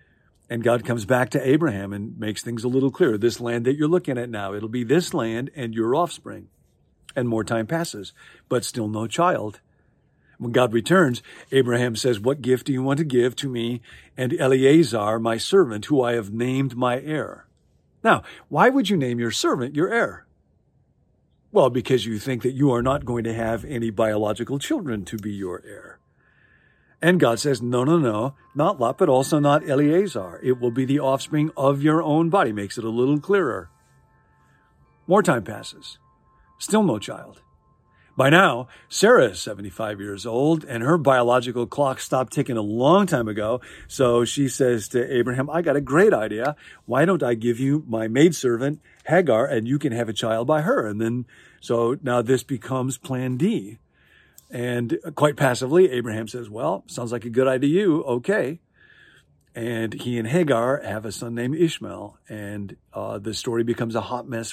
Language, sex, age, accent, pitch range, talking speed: English, male, 50-69, American, 115-140 Hz, 185 wpm